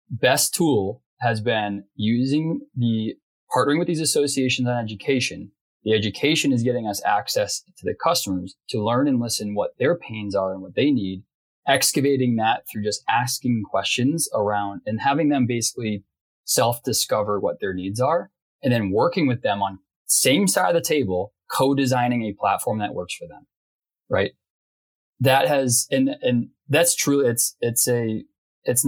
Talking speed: 160 wpm